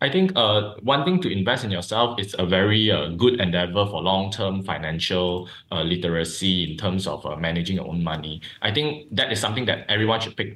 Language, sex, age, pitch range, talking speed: English, male, 20-39, 90-125 Hz, 215 wpm